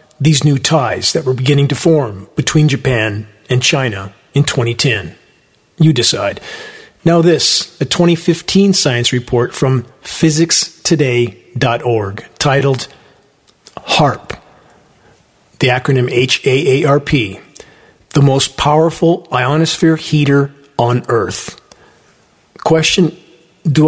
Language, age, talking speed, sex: English, 40-59, 95 wpm, male